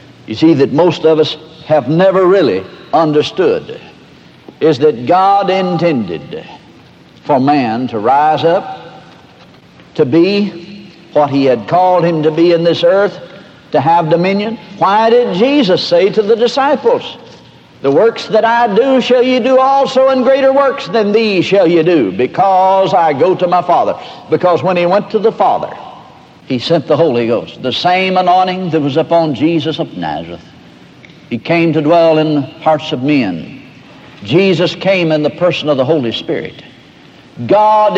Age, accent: 60-79, American